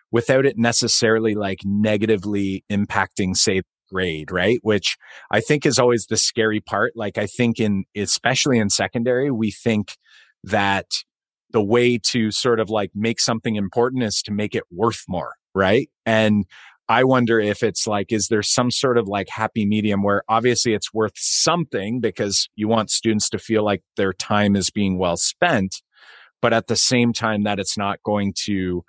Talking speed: 175 wpm